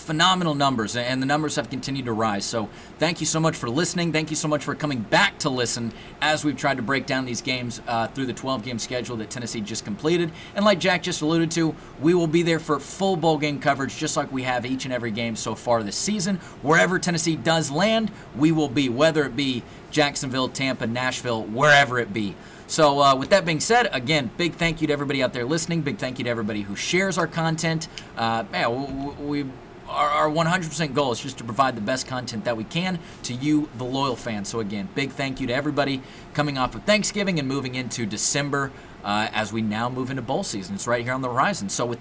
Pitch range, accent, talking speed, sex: 125-165 Hz, American, 230 wpm, male